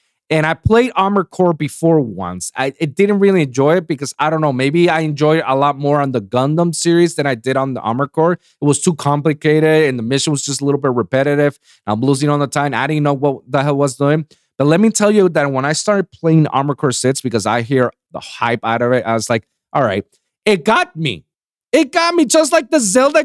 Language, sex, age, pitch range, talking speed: English, male, 30-49, 140-205 Hz, 250 wpm